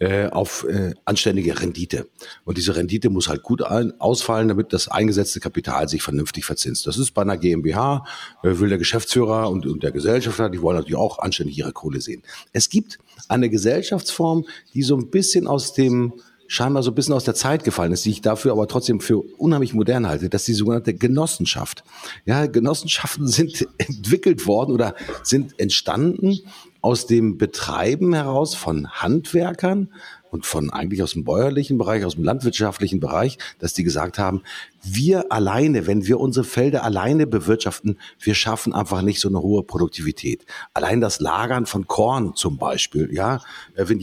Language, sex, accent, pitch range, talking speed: German, male, German, 100-130 Hz, 170 wpm